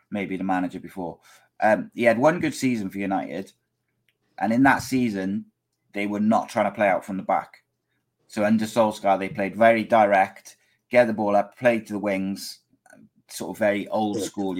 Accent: British